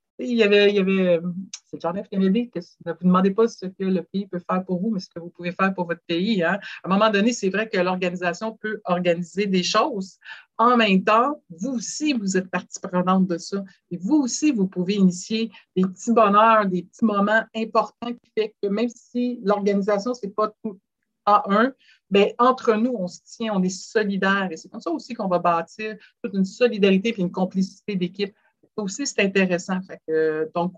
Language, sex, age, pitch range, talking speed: French, female, 60-79, 175-220 Hz, 215 wpm